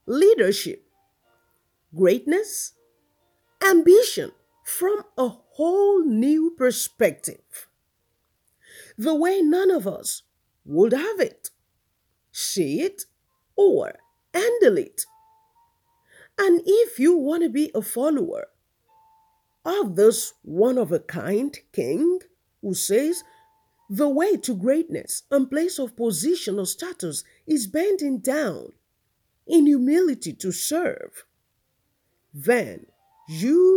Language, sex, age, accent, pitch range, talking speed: English, female, 50-69, Nigerian, 250-405 Hz, 95 wpm